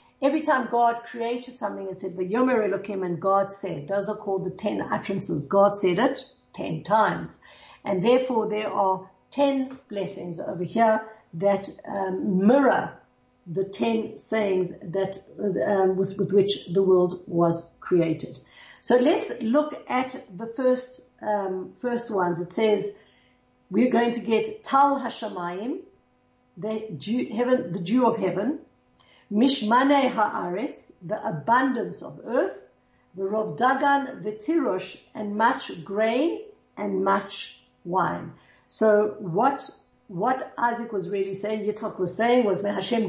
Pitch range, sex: 190-250 Hz, female